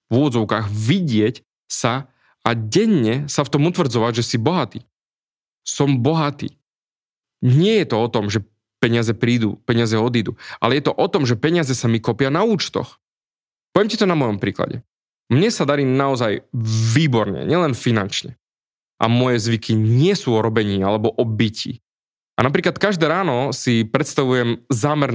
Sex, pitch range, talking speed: male, 115-145 Hz, 155 wpm